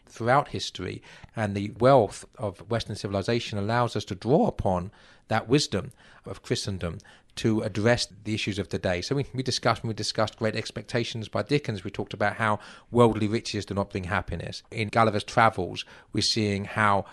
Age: 40-59